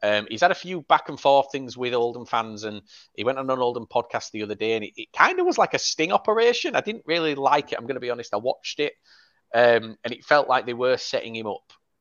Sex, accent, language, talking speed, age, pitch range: male, British, English, 270 wpm, 30-49, 105-140 Hz